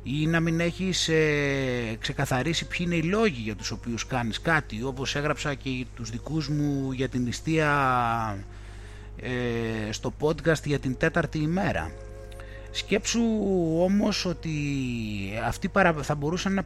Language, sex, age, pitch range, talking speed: Greek, male, 30-49, 110-170 Hz, 135 wpm